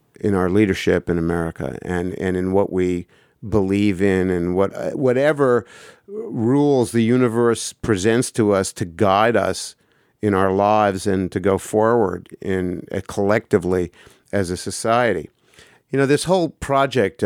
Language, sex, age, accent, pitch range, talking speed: English, male, 50-69, American, 90-110 Hz, 145 wpm